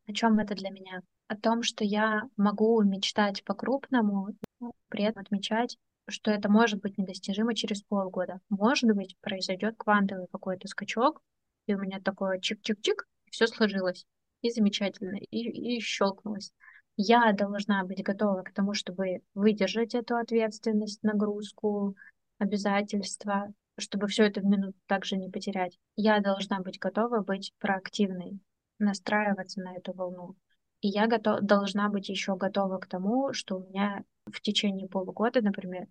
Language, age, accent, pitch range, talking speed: Russian, 20-39, native, 195-220 Hz, 145 wpm